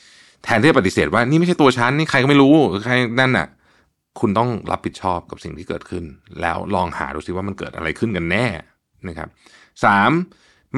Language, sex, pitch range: Thai, male, 85-120 Hz